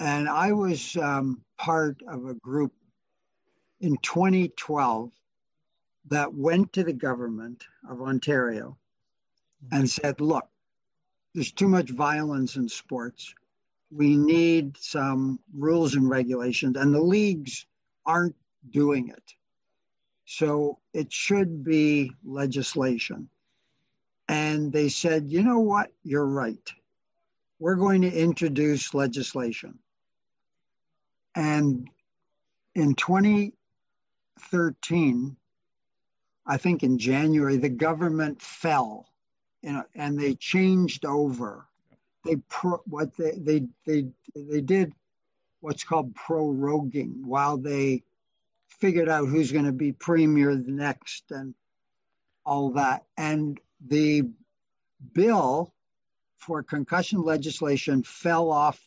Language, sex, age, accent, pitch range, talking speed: English, male, 60-79, American, 135-165 Hz, 105 wpm